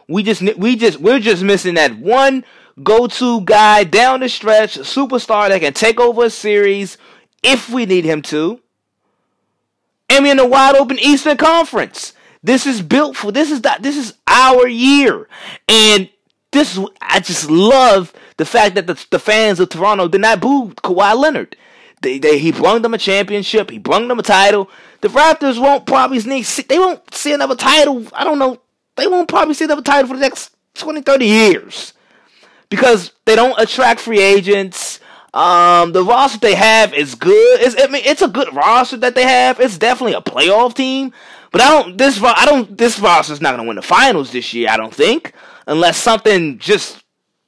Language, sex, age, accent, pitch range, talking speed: English, male, 30-49, American, 205-275 Hz, 190 wpm